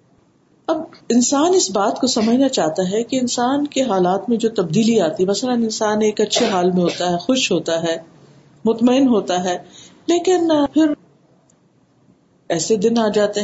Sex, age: female, 50-69